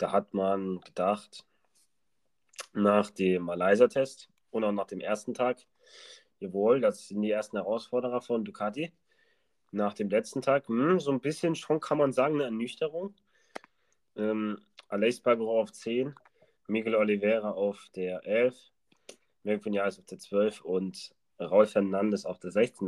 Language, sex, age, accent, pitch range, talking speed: German, male, 30-49, German, 100-135 Hz, 145 wpm